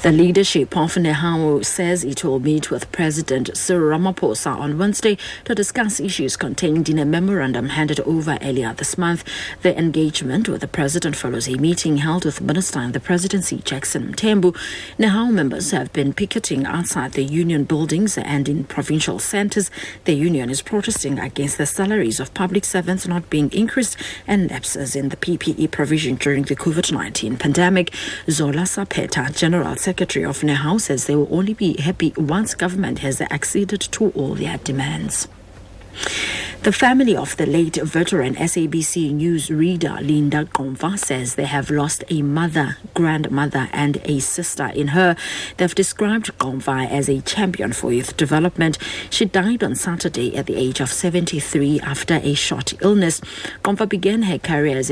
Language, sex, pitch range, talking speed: English, female, 145-180 Hz, 165 wpm